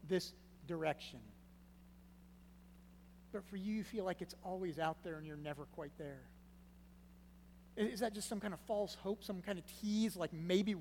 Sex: male